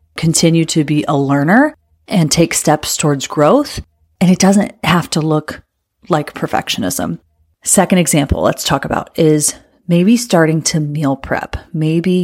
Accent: American